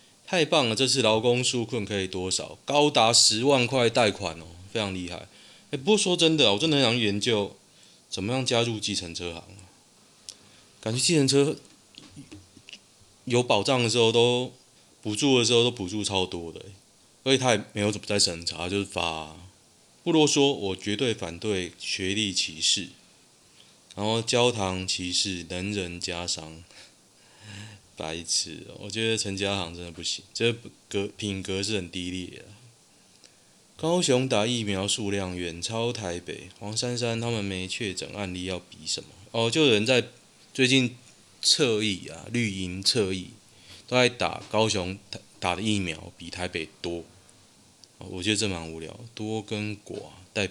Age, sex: 20-39, male